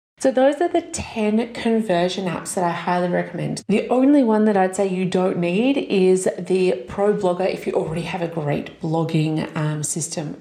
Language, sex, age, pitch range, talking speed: English, female, 30-49, 175-220 Hz, 190 wpm